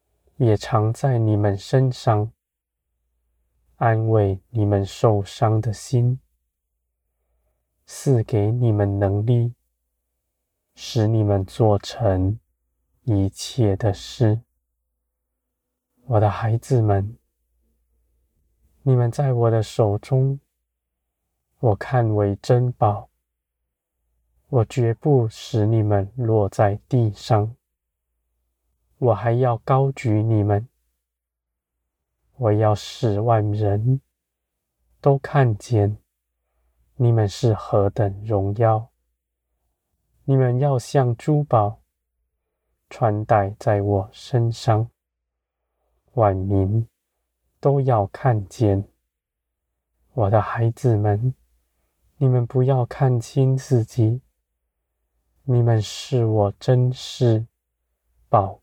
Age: 20-39